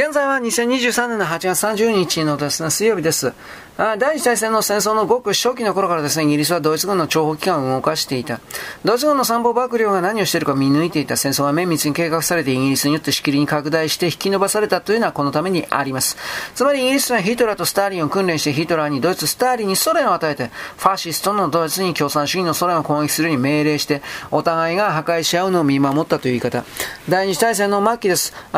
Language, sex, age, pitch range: Japanese, male, 40-59, 155-220 Hz